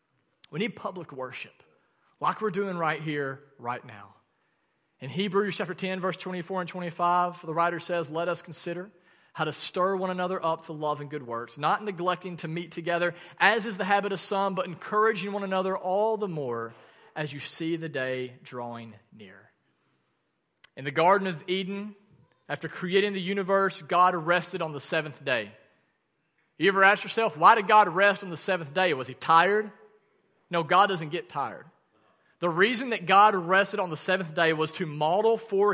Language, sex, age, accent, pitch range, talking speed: English, male, 40-59, American, 150-195 Hz, 185 wpm